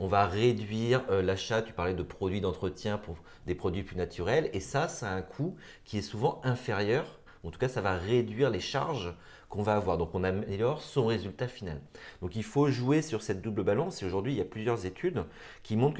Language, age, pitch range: French, 30-49, 90-120 Hz